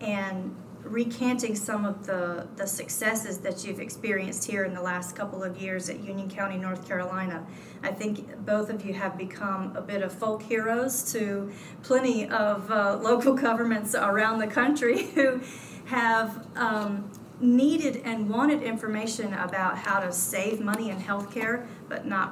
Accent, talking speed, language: American, 160 wpm, English